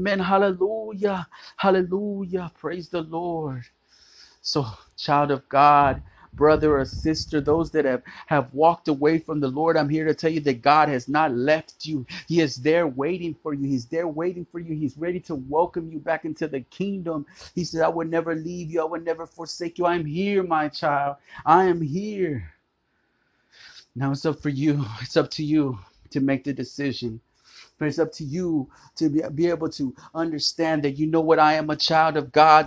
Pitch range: 150-180 Hz